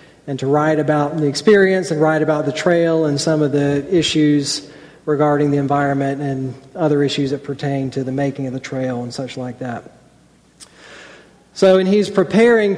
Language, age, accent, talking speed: English, 40-59, American, 180 wpm